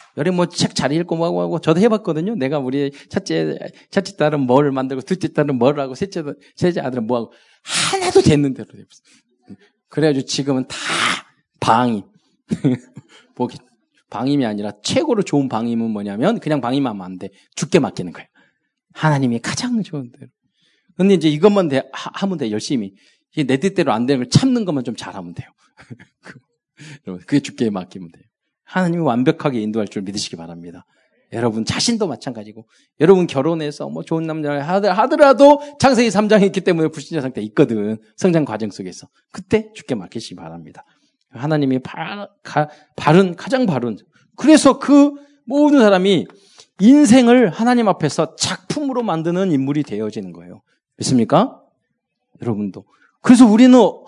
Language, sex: Korean, male